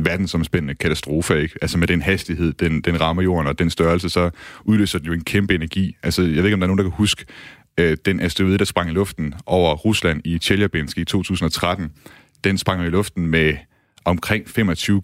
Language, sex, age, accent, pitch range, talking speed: Danish, male, 30-49, native, 85-100 Hz, 210 wpm